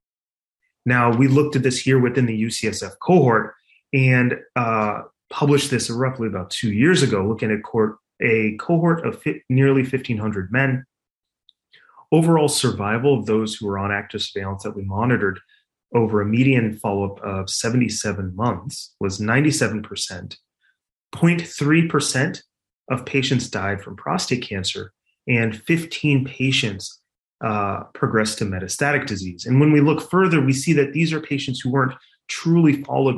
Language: English